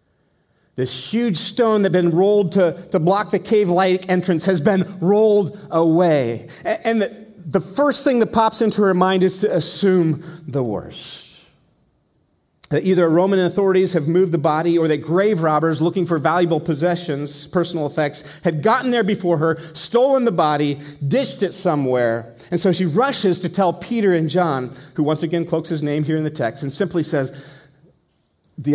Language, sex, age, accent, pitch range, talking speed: English, male, 40-59, American, 150-190 Hz, 175 wpm